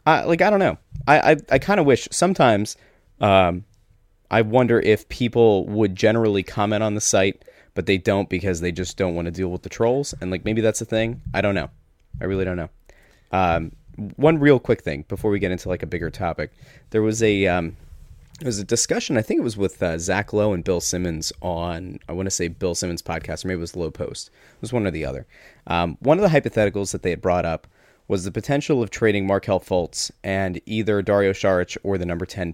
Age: 30-49